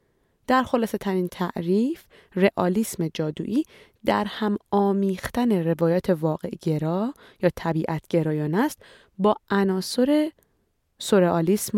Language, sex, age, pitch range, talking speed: Persian, female, 30-49, 165-230 Hz, 85 wpm